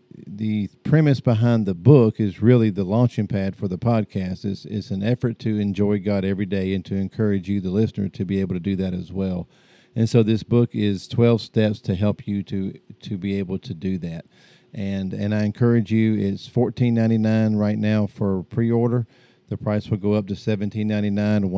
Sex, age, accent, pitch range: male, 50-69, American, 95-110 Hz